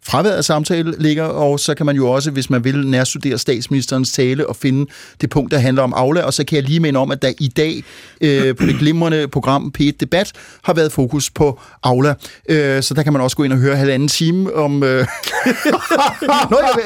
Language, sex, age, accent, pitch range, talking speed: Danish, male, 30-49, native, 130-165 Hz, 215 wpm